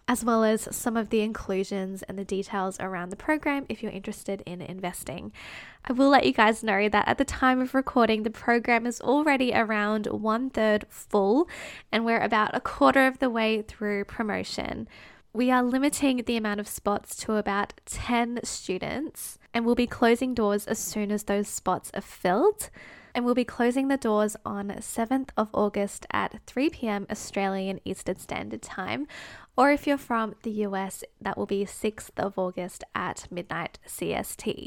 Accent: Australian